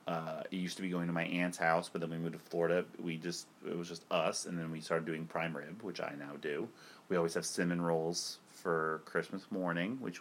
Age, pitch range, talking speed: 30-49, 85-100 Hz, 245 wpm